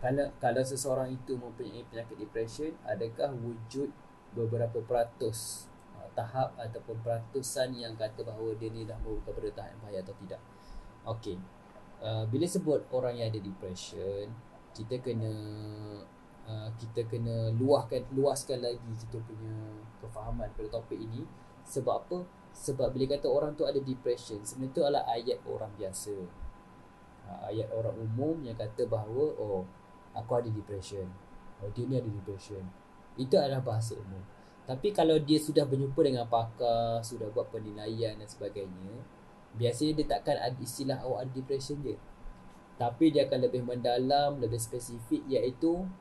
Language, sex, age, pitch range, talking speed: Malay, male, 20-39, 110-140 Hz, 145 wpm